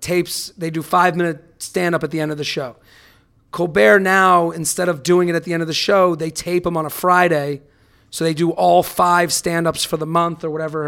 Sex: male